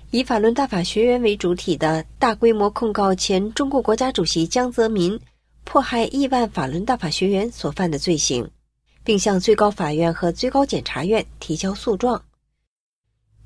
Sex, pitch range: female, 165-230 Hz